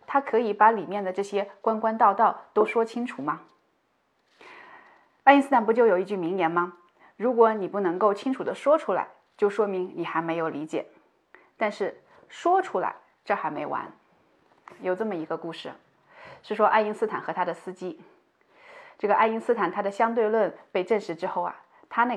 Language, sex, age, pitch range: Chinese, female, 20-39, 180-270 Hz